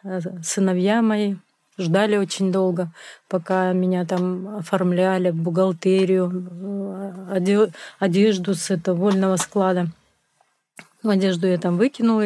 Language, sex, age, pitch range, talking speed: Russian, female, 30-49, 185-235 Hz, 95 wpm